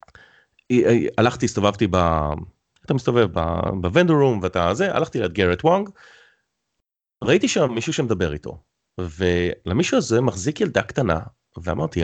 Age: 30-49